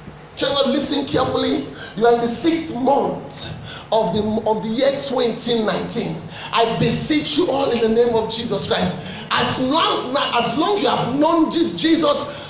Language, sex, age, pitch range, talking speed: English, male, 30-49, 205-305 Hz, 165 wpm